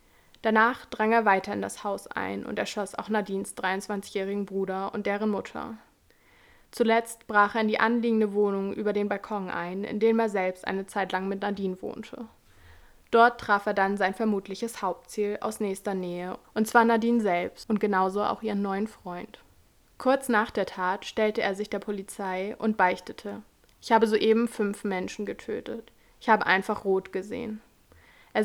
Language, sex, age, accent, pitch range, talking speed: German, female, 20-39, German, 195-220 Hz, 170 wpm